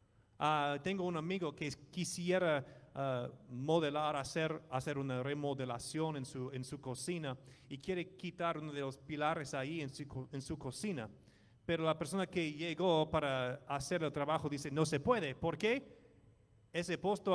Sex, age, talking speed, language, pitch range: male, 30-49, 160 wpm, English, 130-180 Hz